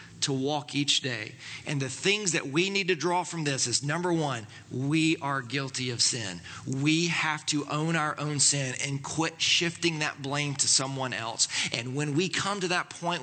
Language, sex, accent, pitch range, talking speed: English, male, American, 125-155 Hz, 200 wpm